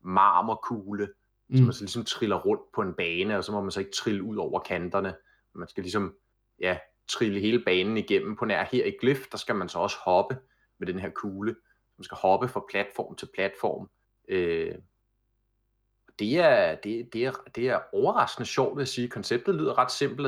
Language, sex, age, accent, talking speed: Danish, male, 30-49, native, 190 wpm